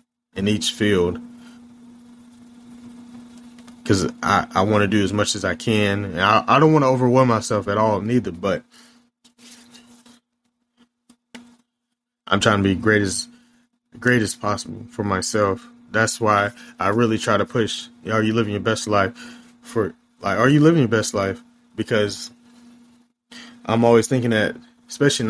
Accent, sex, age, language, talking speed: American, male, 20-39, English, 155 wpm